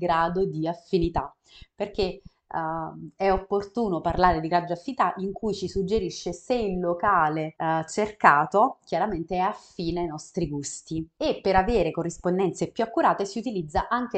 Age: 30-49